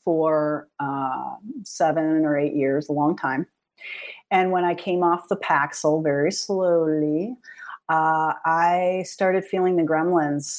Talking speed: 135 wpm